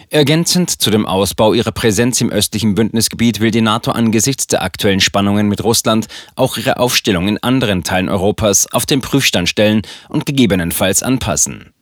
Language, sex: German, male